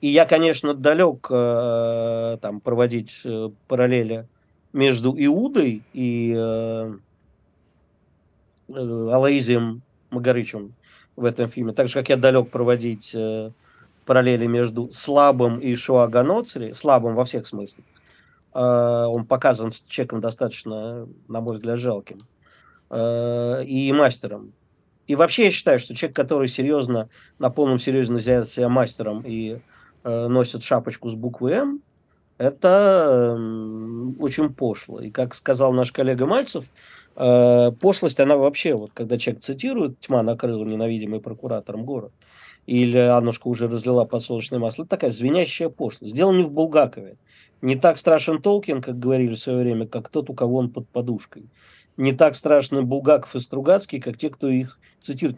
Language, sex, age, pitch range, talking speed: Russian, male, 50-69, 115-135 Hz, 135 wpm